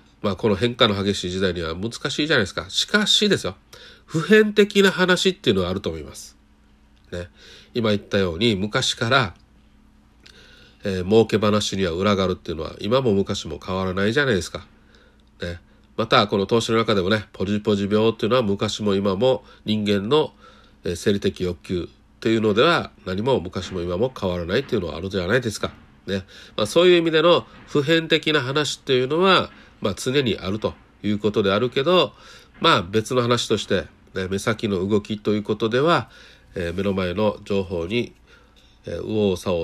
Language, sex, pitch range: Japanese, male, 95-125 Hz